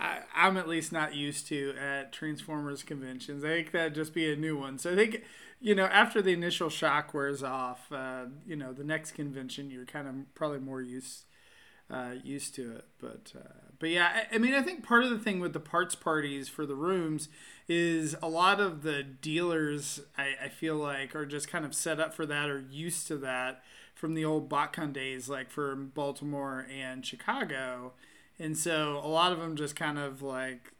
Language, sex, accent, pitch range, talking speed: English, male, American, 140-165 Hz, 205 wpm